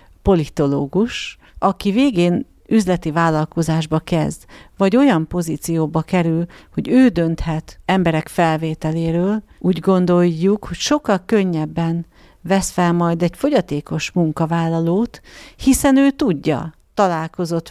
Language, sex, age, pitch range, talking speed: Hungarian, female, 50-69, 160-190 Hz, 100 wpm